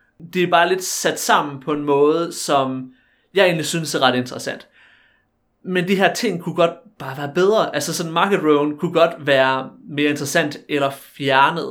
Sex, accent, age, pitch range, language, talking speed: male, native, 30-49, 140-170 Hz, Danish, 185 wpm